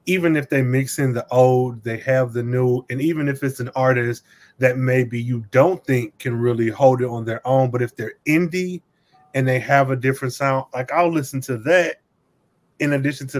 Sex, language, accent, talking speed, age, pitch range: male, English, American, 210 wpm, 20-39, 125-155 Hz